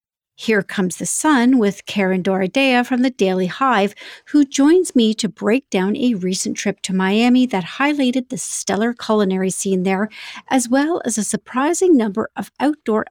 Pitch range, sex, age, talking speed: 200-270 Hz, female, 50-69, 170 wpm